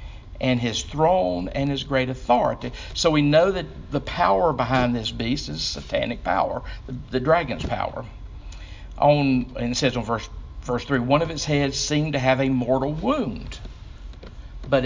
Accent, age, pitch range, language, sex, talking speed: American, 50-69, 120-140 Hz, English, male, 160 wpm